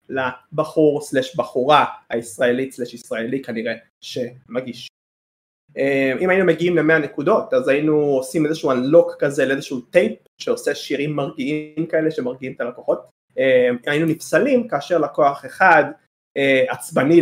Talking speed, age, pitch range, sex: 120 wpm, 20-39, 130-180 Hz, male